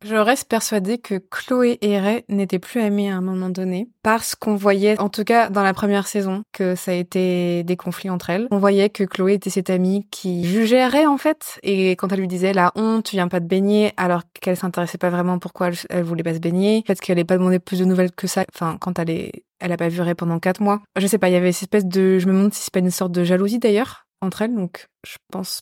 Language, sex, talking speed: French, female, 270 wpm